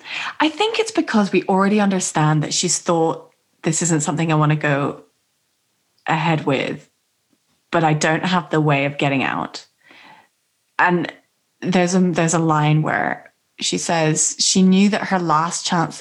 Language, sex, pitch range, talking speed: English, female, 155-200 Hz, 155 wpm